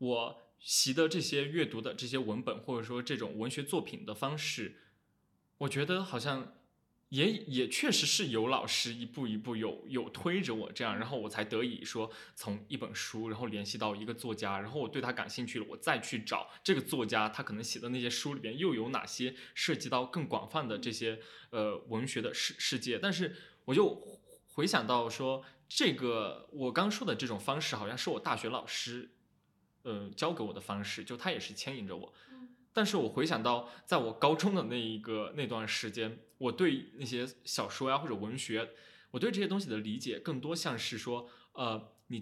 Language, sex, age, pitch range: Chinese, male, 20-39, 110-145 Hz